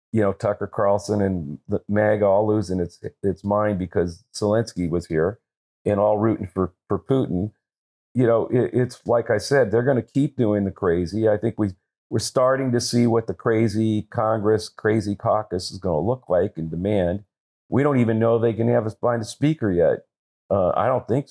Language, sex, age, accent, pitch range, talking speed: English, male, 50-69, American, 100-120 Hz, 205 wpm